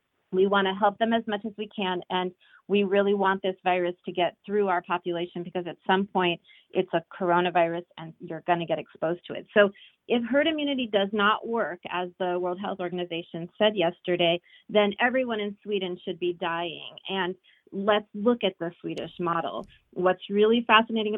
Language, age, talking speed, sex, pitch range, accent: English, 30-49, 190 wpm, female, 180-215 Hz, American